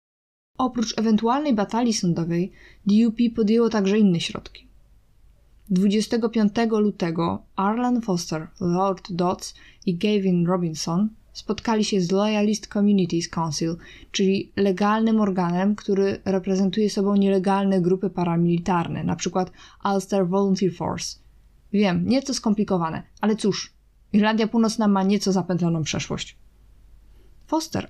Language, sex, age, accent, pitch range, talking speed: Polish, female, 20-39, native, 185-230 Hz, 105 wpm